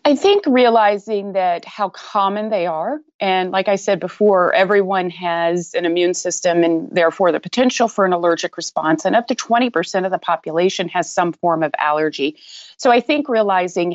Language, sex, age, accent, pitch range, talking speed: English, female, 30-49, American, 165-195 Hz, 180 wpm